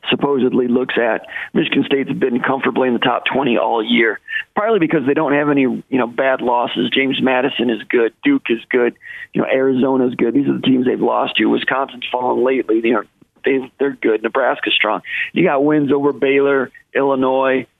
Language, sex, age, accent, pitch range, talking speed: English, male, 40-59, American, 130-155 Hz, 190 wpm